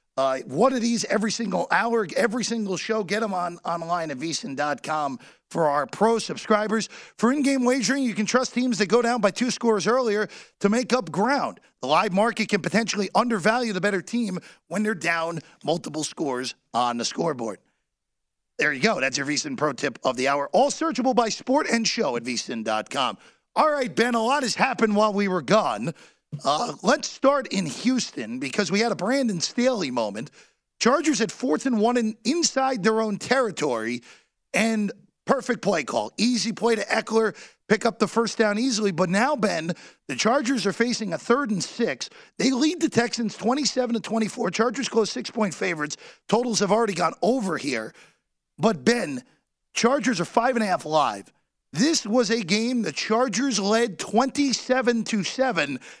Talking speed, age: 180 wpm, 40-59